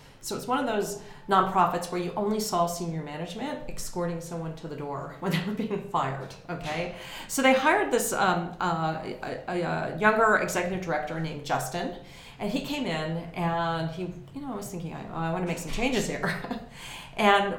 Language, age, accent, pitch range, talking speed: English, 40-59, American, 165-215 Hz, 190 wpm